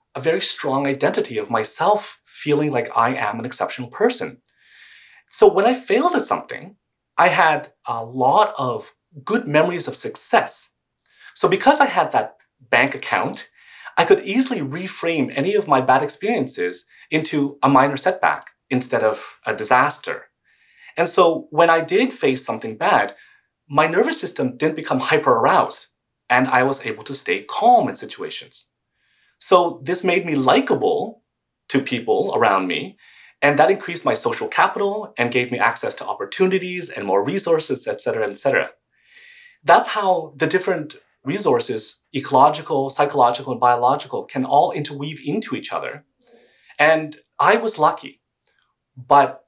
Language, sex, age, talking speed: English, male, 30-49, 150 wpm